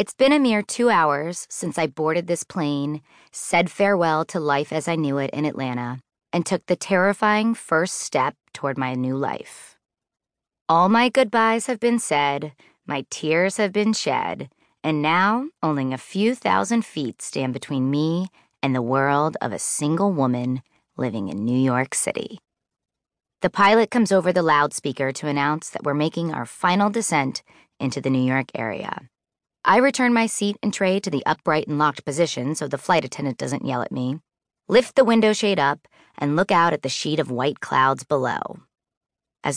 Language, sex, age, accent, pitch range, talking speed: English, female, 30-49, American, 140-185 Hz, 180 wpm